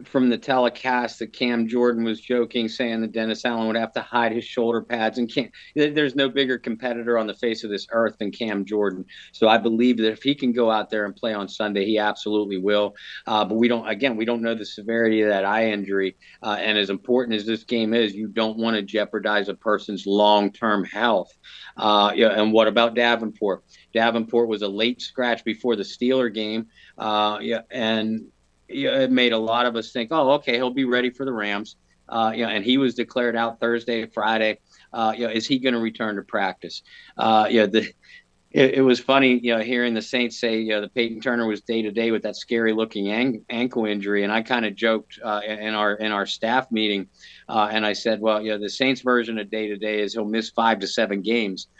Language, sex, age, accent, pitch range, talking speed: English, male, 50-69, American, 105-120 Hz, 235 wpm